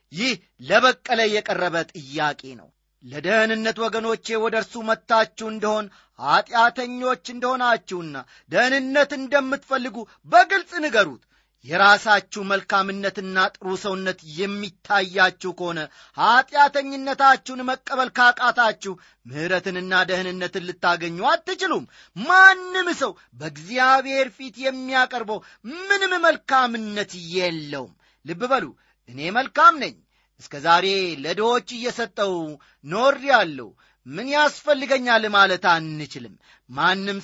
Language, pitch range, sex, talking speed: Amharic, 185-255 Hz, male, 80 wpm